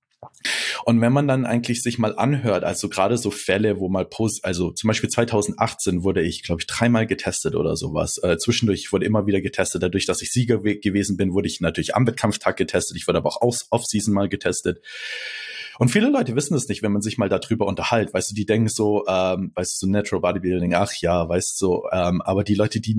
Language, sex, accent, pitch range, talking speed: German, male, German, 95-120 Hz, 215 wpm